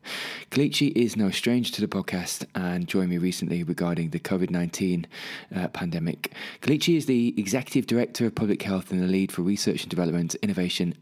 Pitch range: 90-115 Hz